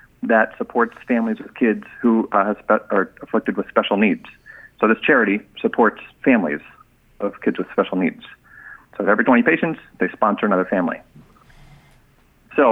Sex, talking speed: male, 145 wpm